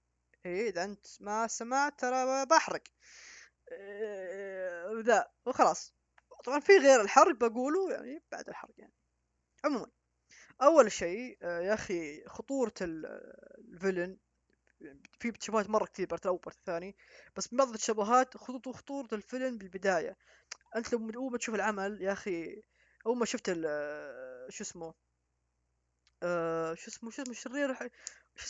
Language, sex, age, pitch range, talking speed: English, female, 20-39, 180-265 Hz, 120 wpm